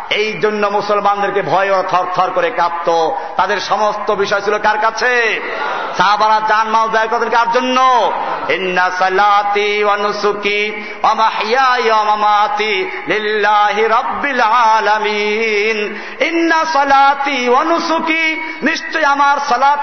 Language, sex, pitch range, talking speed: Bengali, male, 210-280 Hz, 60 wpm